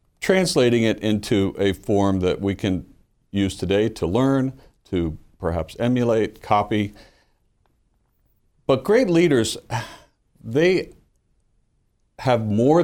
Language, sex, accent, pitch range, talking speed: English, male, American, 95-120 Hz, 105 wpm